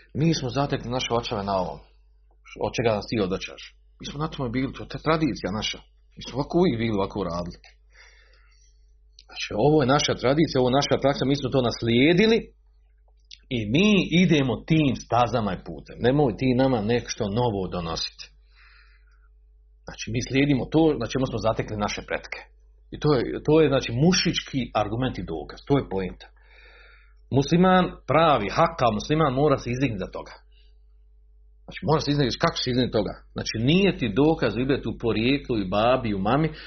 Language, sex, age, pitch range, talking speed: Croatian, male, 40-59, 105-155 Hz, 175 wpm